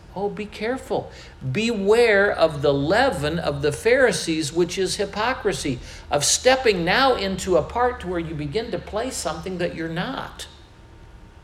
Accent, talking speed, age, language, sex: American, 145 wpm, 60-79, English, male